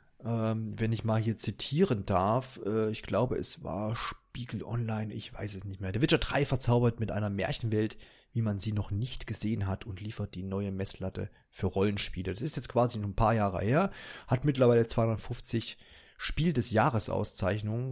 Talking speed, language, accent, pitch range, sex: 180 wpm, German, German, 100-125 Hz, male